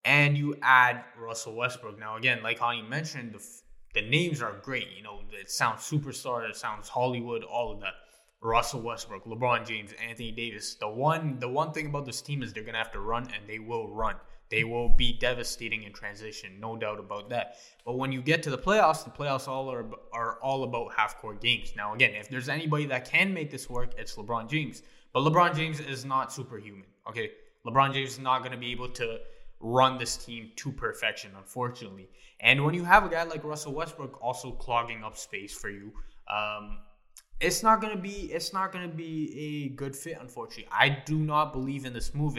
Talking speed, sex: 210 wpm, male